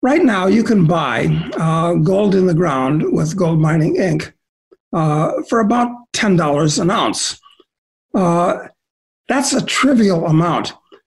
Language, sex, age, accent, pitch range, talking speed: English, male, 60-79, American, 160-205 Hz, 135 wpm